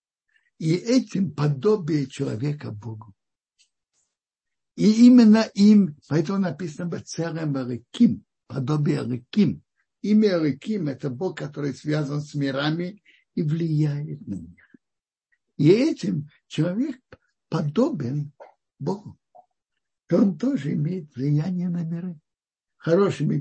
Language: Russian